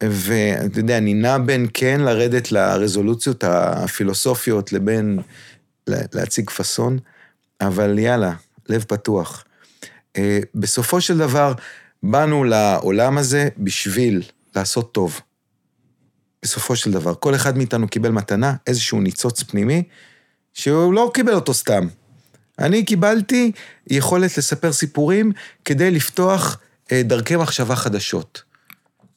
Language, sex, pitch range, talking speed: Hebrew, male, 110-150 Hz, 105 wpm